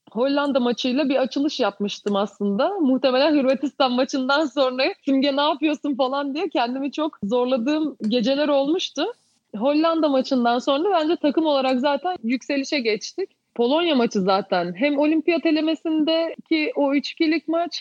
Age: 30-49